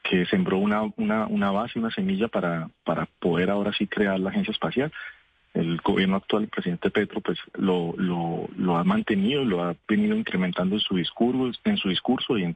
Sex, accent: male, Colombian